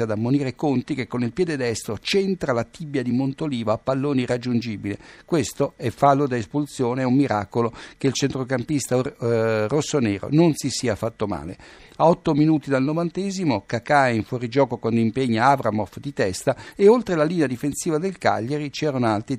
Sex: male